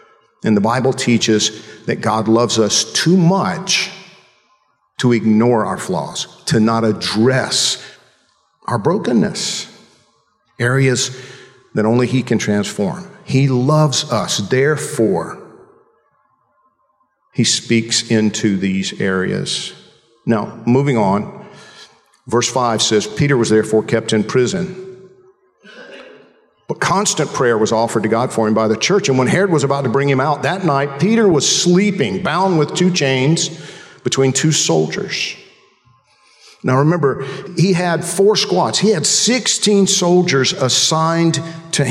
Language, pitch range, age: English, 115-175 Hz, 50-69